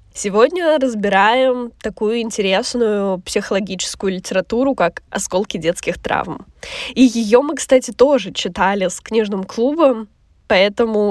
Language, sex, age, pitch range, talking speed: Russian, female, 10-29, 210-255 Hz, 110 wpm